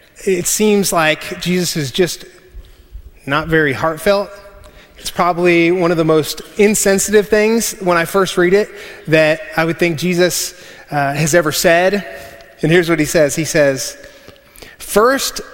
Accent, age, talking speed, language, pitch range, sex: American, 30-49, 150 wpm, English, 135-175 Hz, male